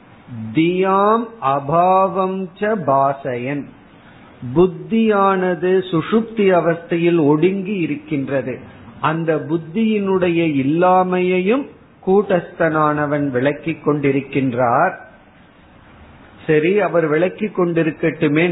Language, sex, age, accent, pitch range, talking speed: Tamil, male, 50-69, native, 150-185 Hz, 55 wpm